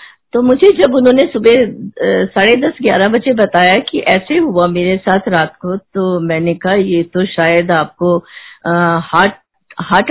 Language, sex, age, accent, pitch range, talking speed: Hindi, female, 50-69, native, 180-215 Hz, 160 wpm